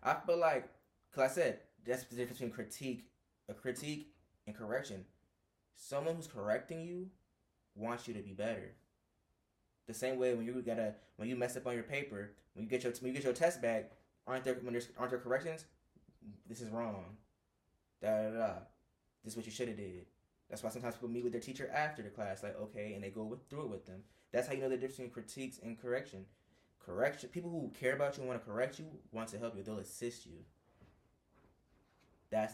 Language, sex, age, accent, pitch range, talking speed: English, male, 10-29, American, 105-130 Hz, 215 wpm